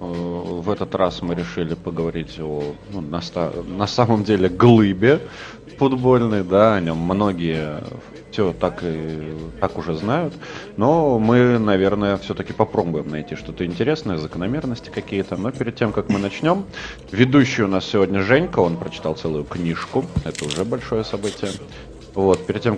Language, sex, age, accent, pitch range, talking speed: Russian, male, 30-49, native, 85-110 Hz, 150 wpm